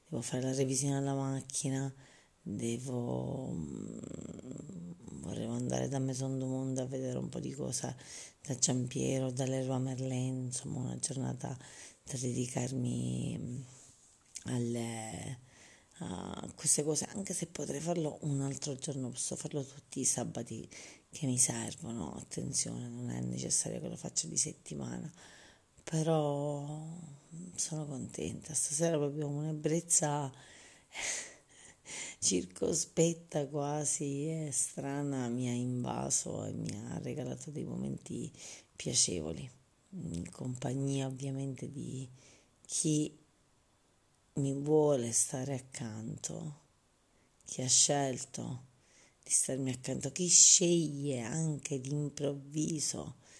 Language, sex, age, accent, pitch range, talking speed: Italian, female, 30-49, native, 125-150 Hz, 110 wpm